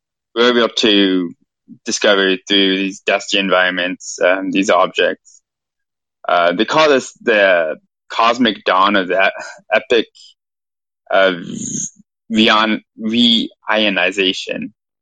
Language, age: English, 20-39